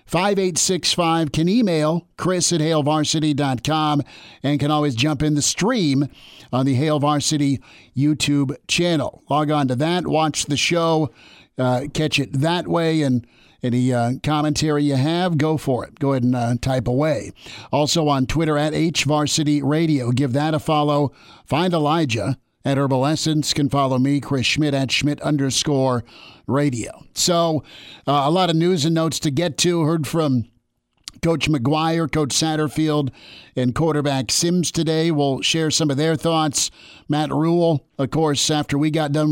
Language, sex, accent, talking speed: English, male, American, 160 wpm